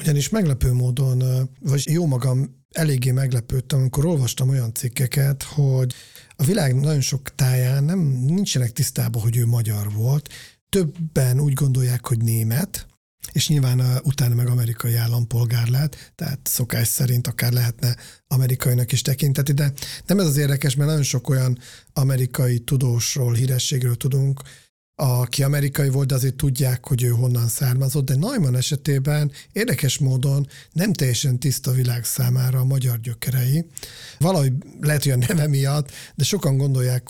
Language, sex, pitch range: Hungarian, male, 125-140 Hz